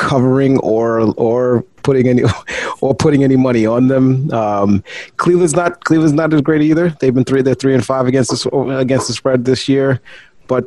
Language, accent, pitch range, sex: English, American, 100-130 Hz, male